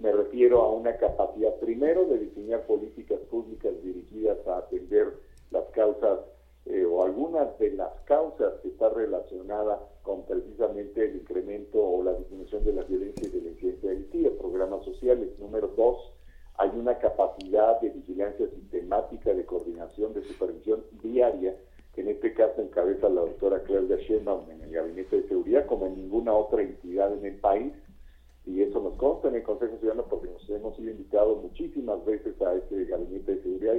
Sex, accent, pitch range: male, Mexican, 365-435 Hz